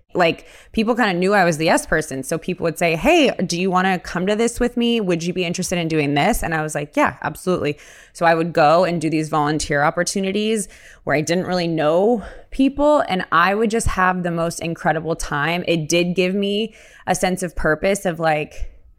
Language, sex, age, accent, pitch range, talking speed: English, female, 20-39, American, 155-185 Hz, 230 wpm